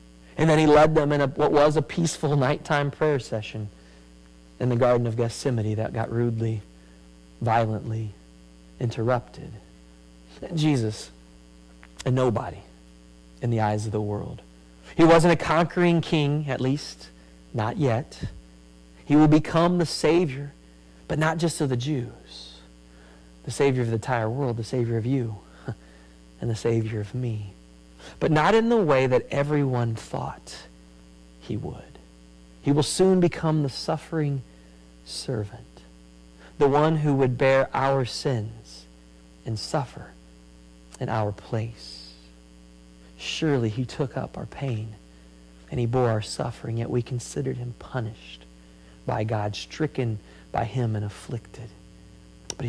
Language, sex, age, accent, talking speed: English, male, 40-59, American, 140 wpm